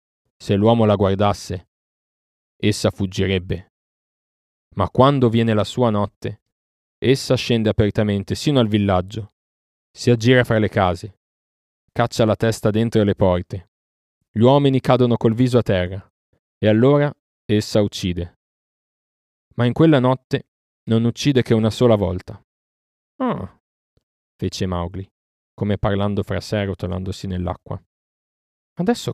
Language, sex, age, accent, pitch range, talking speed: Italian, male, 30-49, native, 90-115 Hz, 125 wpm